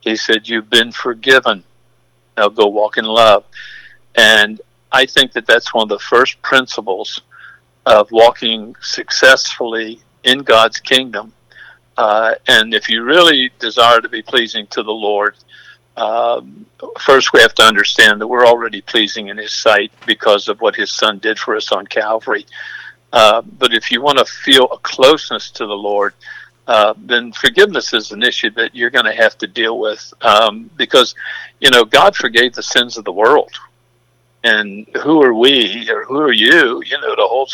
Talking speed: 175 wpm